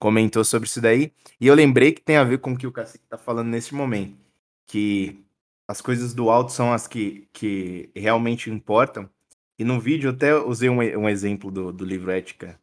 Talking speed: 210 wpm